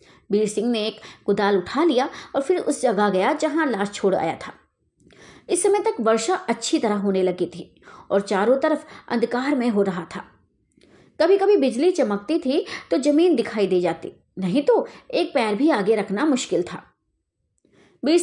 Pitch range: 200-310 Hz